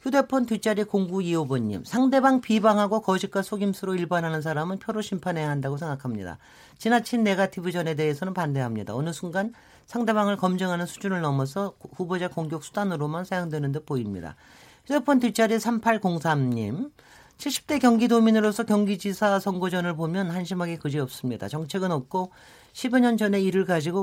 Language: Korean